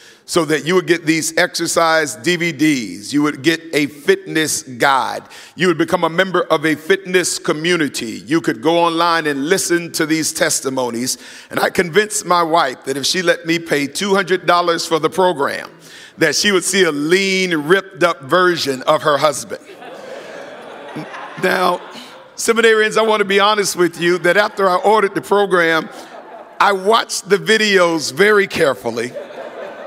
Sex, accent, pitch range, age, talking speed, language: male, American, 170-215 Hz, 50-69, 160 wpm, English